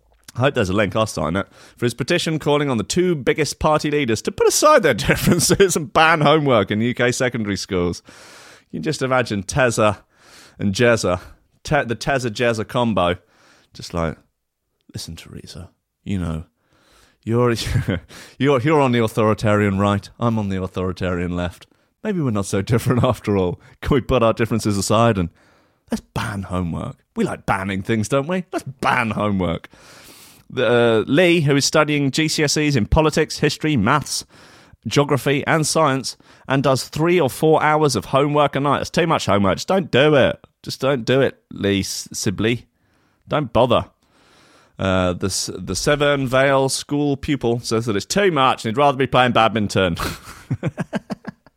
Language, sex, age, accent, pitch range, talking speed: English, male, 30-49, British, 100-145 Hz, 165 wpm